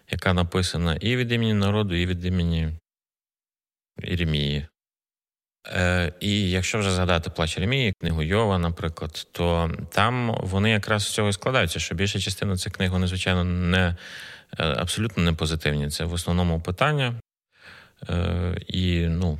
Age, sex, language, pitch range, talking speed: 30-49, male, Ukrainian, 85-105 Hz, 140 wpm